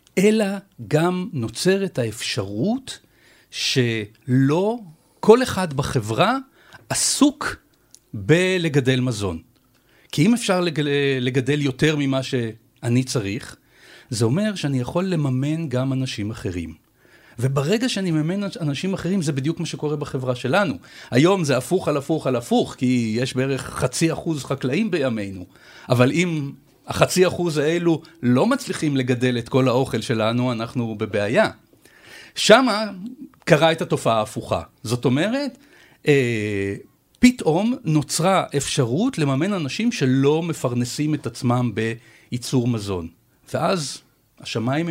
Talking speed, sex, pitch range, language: 115 wpm, male, 120-170 Hz, Hebrew